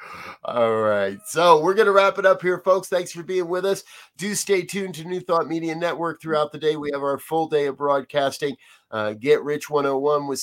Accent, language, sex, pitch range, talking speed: American, English, male, 125-155 Hz, 220 wpm